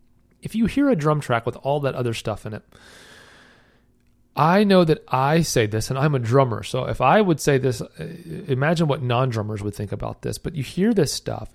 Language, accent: English, American